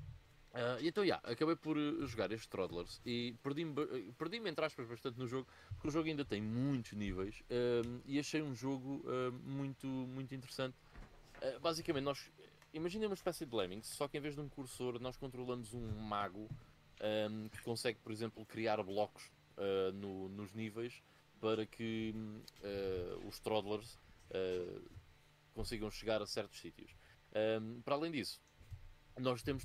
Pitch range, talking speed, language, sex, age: 110-135 Hz, 165 wpm, Portuguese, male, 20-39